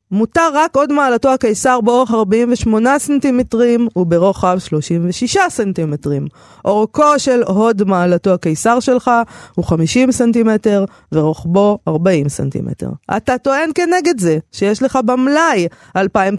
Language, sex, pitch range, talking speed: Hebrew, female, 185-250 Hz, 115 wpm